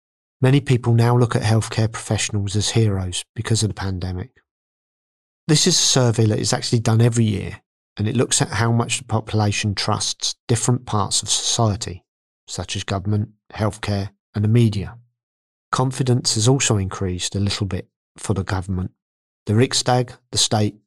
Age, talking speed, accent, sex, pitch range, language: 40-59, 165 wpm, British, male, 100-120 Hz, English